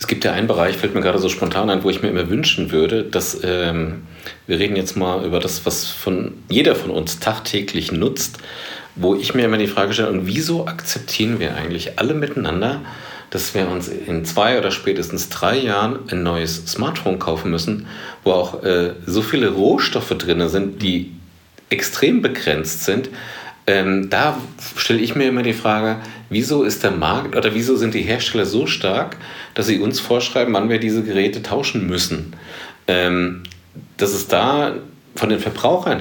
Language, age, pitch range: German, 40-59, 85-110 Hz